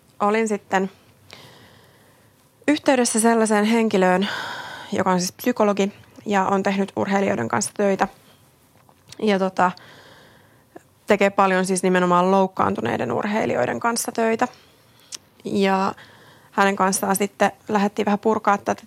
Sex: female